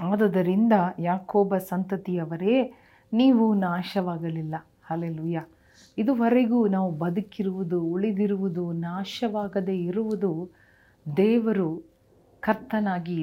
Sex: female